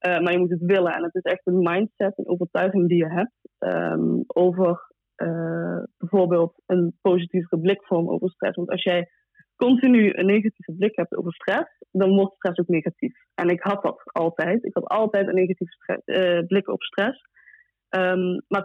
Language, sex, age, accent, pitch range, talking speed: Dutch, female, 20-39, Dutch, 175-200 Hz, 175 wpm